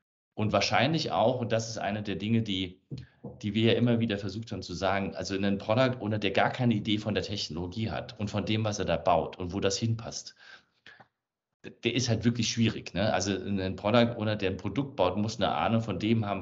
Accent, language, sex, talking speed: German, German, male, 235 wpm